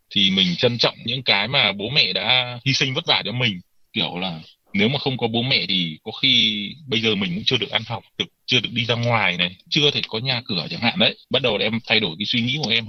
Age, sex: 20-39, male